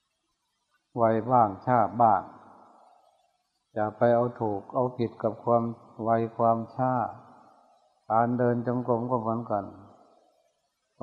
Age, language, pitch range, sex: 60-79, Thai, 110-125 Hz, male